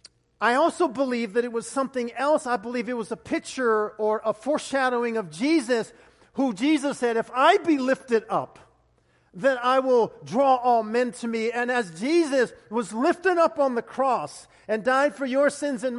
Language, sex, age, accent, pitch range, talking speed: English, male, 50-69, American, 190-280 Hz, 190 wpm